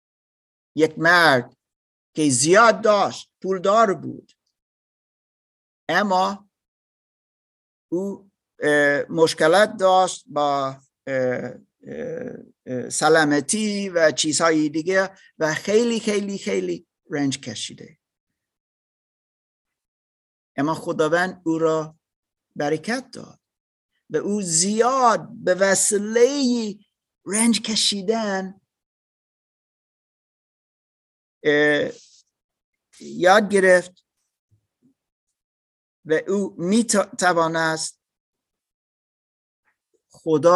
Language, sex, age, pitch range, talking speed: Persian, male, 50-69, 155-215 Hz, 60 wpm